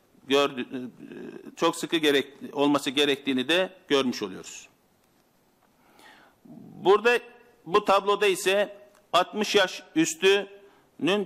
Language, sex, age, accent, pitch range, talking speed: Turkish, male, 50-69, native, 150-200 Hz, 85 wpm